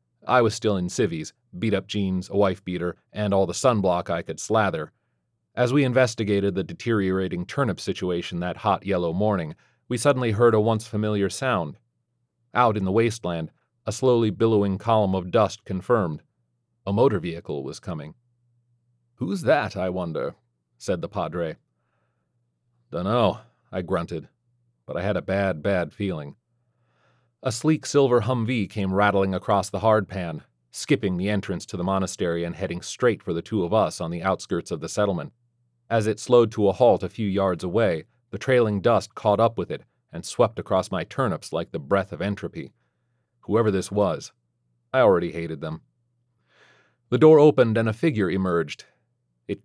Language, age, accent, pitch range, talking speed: English, 40-59, American, 90-120 Hz, 165 wpm